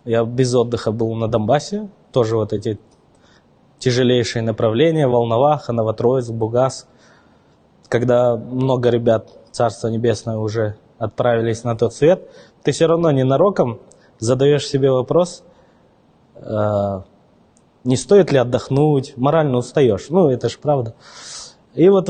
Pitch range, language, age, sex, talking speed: 115-135 Hz, Russian, 20-39, male, 120 wpm